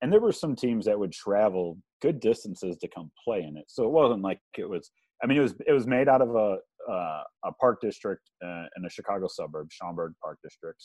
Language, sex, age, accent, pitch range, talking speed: English, male, 30-49, American, 80-100 Hz, 245 wpm